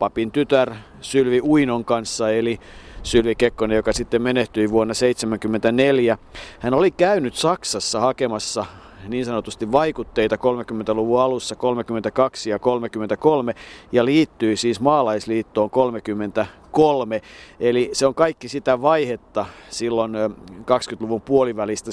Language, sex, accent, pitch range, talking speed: Finnish, male, native, 110-135 Hz, 110 wpm